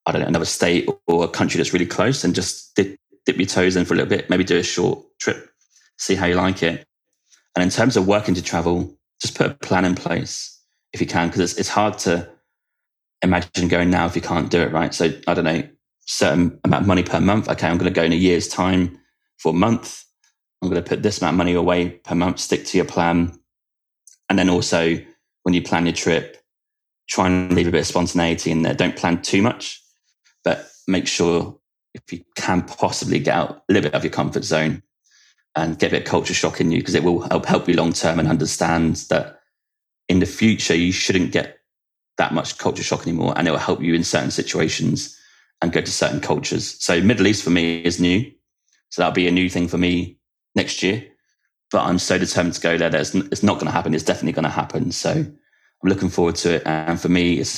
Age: 20-39